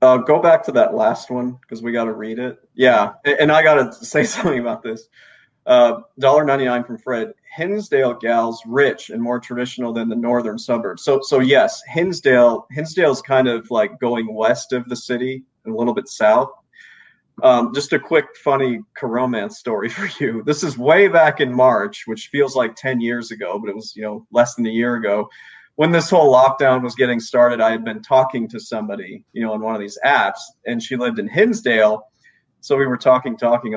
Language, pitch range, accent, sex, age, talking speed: English, 115-135 Hz, American, male, 30-49, 210 wpm